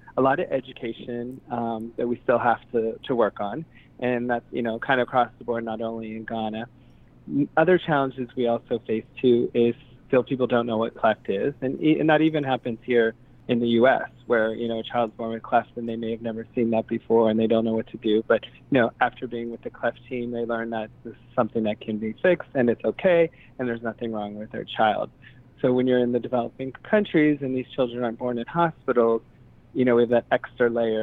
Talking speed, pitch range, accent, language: 240 wpm, 115-130 Hz, American, English